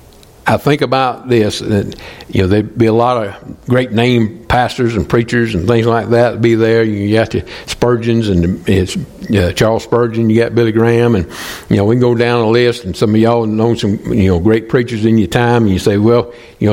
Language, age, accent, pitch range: English, 60-79, American, 95-120 Hz